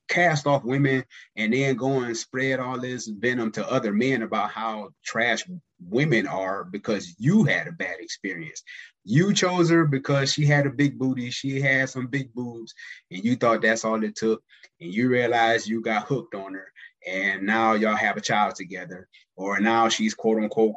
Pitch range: 105-140 Hz